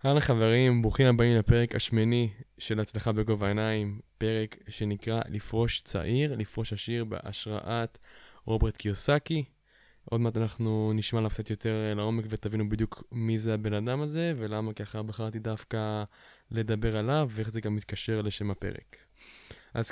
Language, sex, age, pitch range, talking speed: Hebrew, male, 20-39, 105-115 Hz, 140 wpm